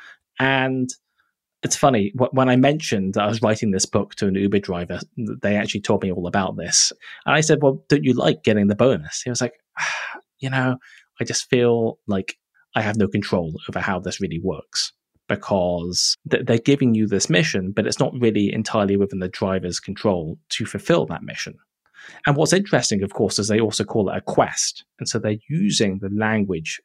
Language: English